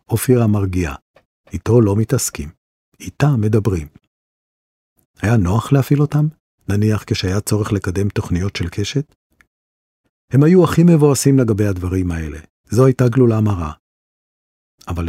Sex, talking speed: male, 120 wpm